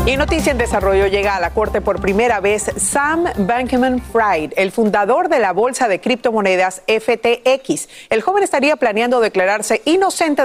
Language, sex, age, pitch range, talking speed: Spanish, female, 40-59, 190-280 Hz, 155 wpm